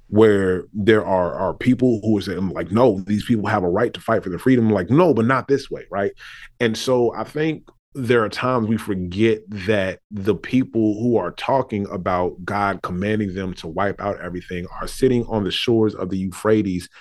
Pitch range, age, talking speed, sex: 95-120 Hz, 30-49, 205 wpm, male